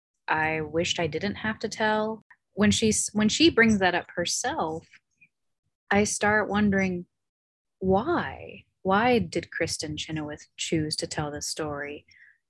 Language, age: English, 20-39